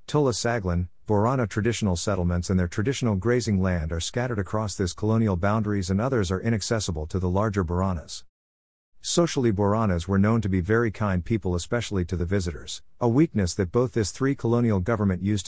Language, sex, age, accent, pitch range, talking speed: English, male, 50-69, American, 90-115 Hz, 175 wpm